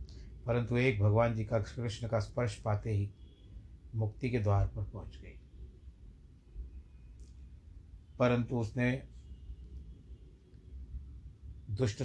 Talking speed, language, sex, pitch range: 95 wpm, Hindi, male, 80-120 Hz